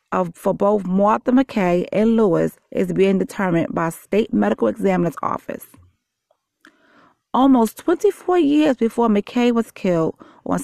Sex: female